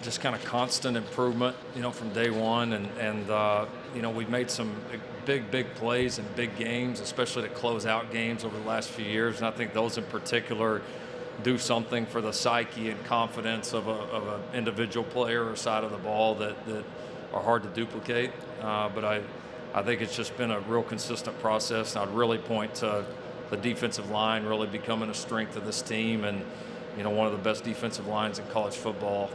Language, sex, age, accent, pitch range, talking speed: English, male, 40-59, American, 110-125 Hz, 210 wpm